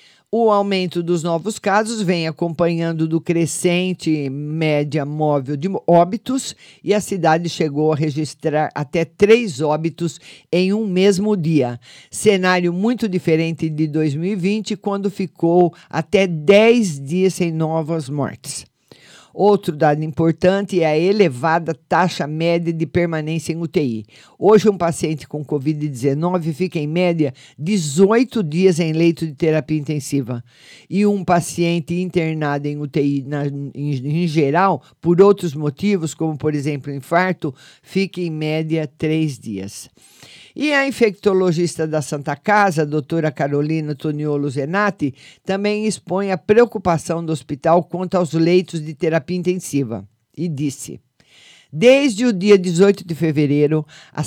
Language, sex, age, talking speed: Portuguese, male, 50-69, 130 wpm